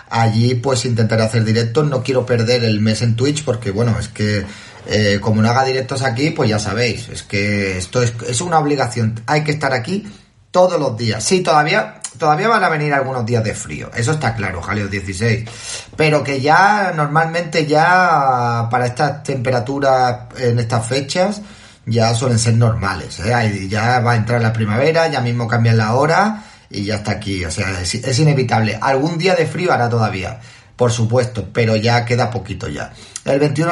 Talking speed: 185 wpm